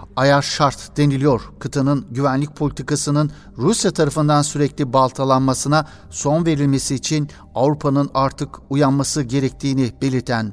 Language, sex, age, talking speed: Turkish, male, 60-79, 105 wpm